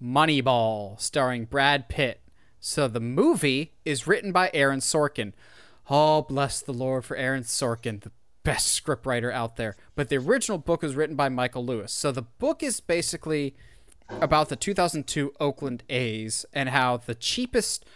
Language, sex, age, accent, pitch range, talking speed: English, male, 20-39, American, 125-155 Hz, 155 wpm